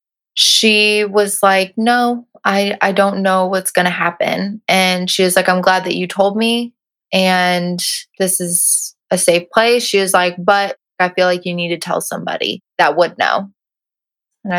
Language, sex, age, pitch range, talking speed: English, female, 20-39, 175-200 Hz, 180 wpm